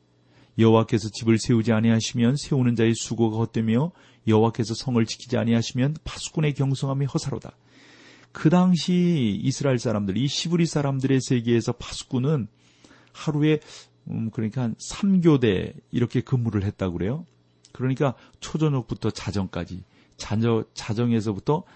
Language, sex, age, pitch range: Korean, male, 40-59, 100-135 Hz